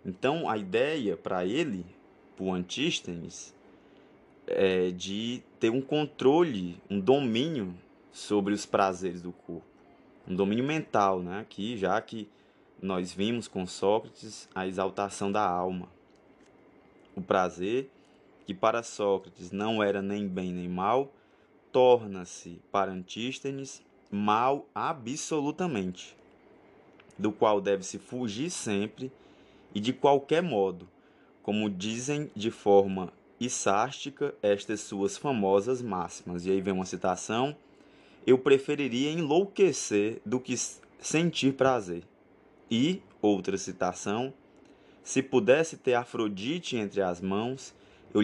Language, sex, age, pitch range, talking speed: Portuguese, male, 20-39, 95-130 Hz, 115 wpm